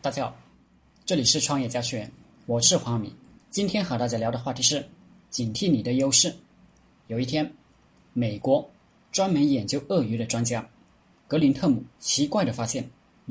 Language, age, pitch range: Chinese, 20-39, 115-145 Hz